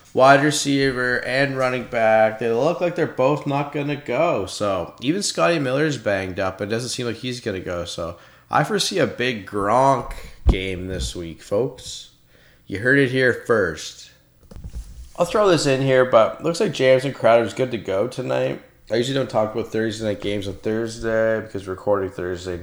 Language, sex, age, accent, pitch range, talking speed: English, male, 20-39, American, 100-130 Hz, 190 wpm